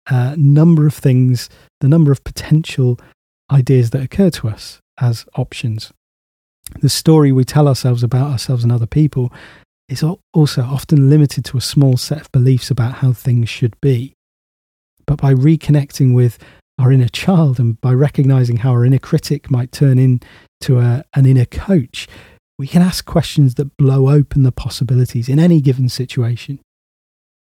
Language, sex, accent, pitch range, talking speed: English, male, British, 120-145 Hz, 160 wpm